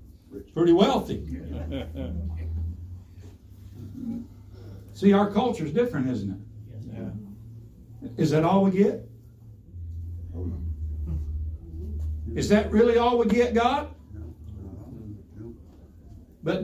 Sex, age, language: male, 60-79, English